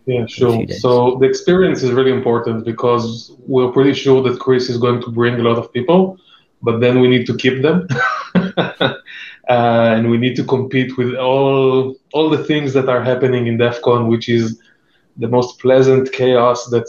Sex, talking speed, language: male, 185 wpm, English